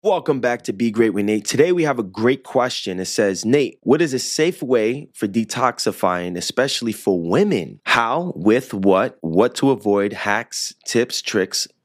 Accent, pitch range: American, 105-130 Hz